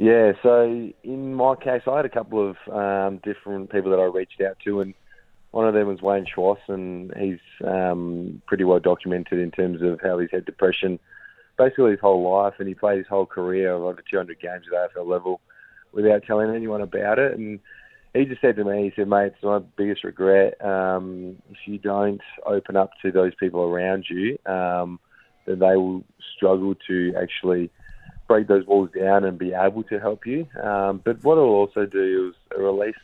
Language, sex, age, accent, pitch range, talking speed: English, male, 20-39, Australian, 90-100 Hz, 195 wpm